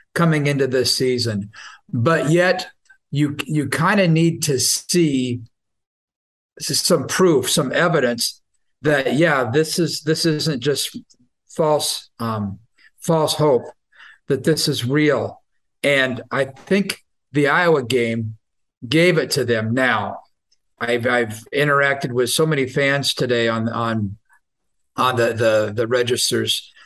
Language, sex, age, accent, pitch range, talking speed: English, male, 50-69, American, 120-160 Hz, 130 wpm